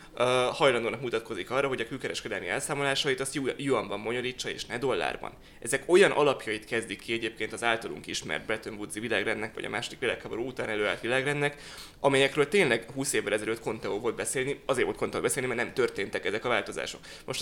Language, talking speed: Hungarian, 175 wpm